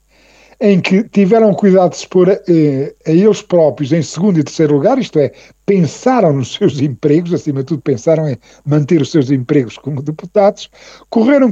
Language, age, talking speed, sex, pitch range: Portuguese, 50-69, 170 wpm, male, 150-230 Hz